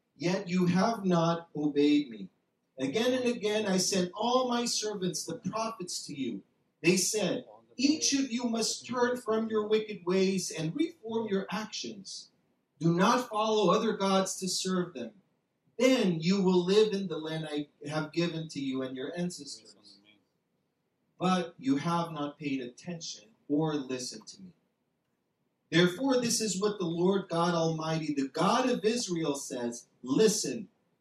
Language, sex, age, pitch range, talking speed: English, male, 40-59, 160-215 Hz, 155 wpm